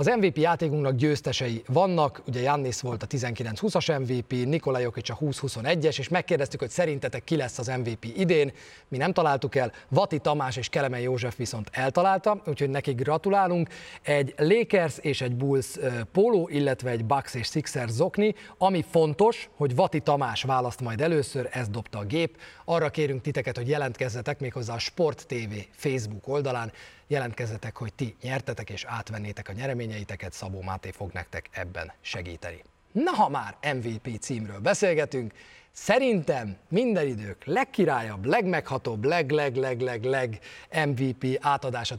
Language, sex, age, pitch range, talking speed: Hungarian, male, 30-49, 115-155 Hz, 145 wpm